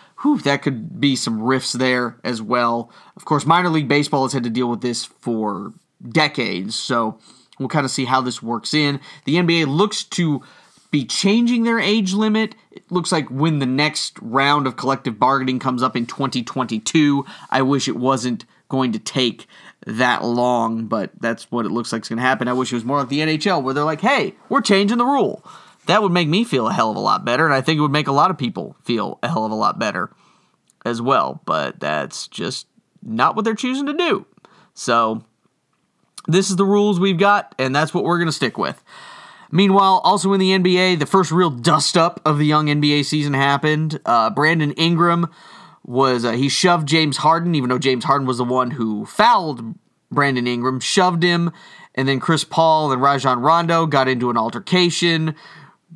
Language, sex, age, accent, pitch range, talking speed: English, male, 30-49, American, 130-175 Hz, 205 wpm